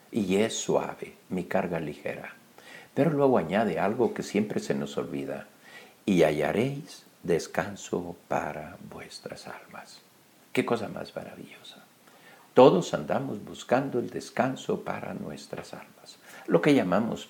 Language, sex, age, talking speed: Spanish, male, 60-79, 125 wpm